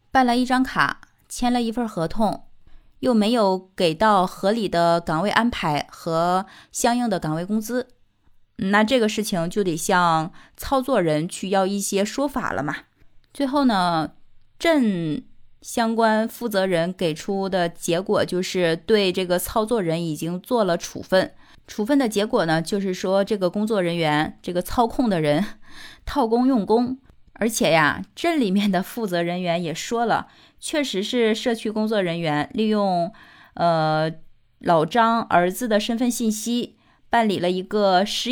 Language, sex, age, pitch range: Chinese, female, 20-39, 180-235 Hz